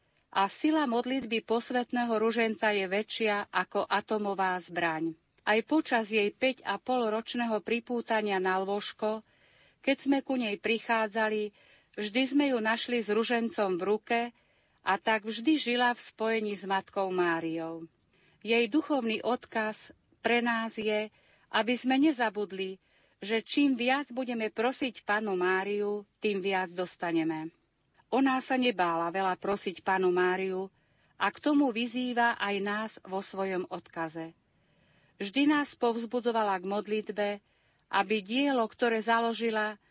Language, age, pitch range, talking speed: Slovak, 40-59, 195-235 Hz, 125 wpm